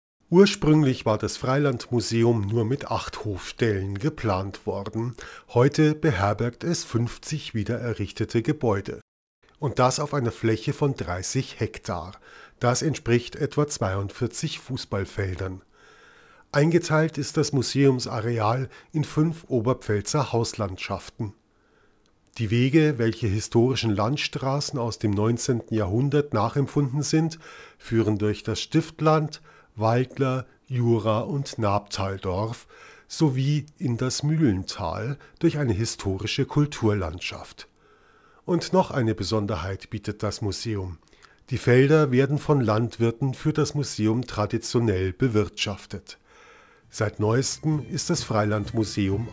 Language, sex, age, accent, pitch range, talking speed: German, male, 50-69, German, 105-145 Hz, 105 wpm